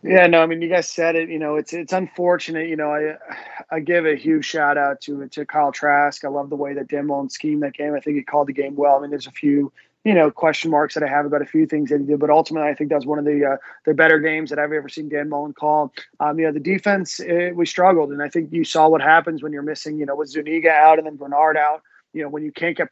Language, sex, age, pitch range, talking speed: English, male, 20-39, 140-160 Hz, 300 wpm